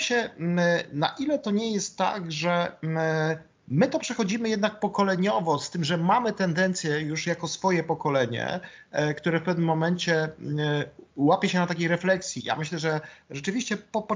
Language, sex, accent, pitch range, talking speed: Polish, male, native, 155-200 Hz, 155 wpm